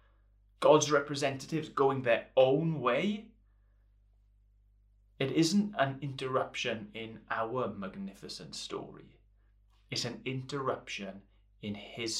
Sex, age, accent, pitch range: male, 30-49, British, 100-135 Hz